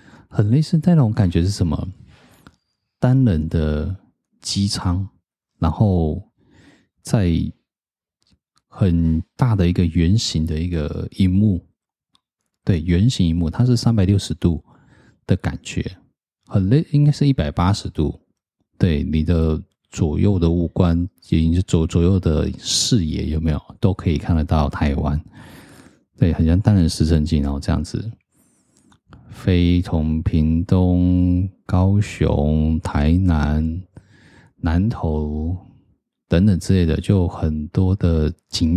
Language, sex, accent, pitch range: Chinese, male, native, 80-100 Hz